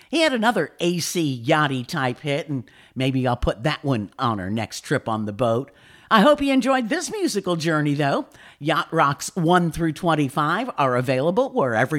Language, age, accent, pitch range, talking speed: English, 50-69, American, 130-165 Hz, 175 wpm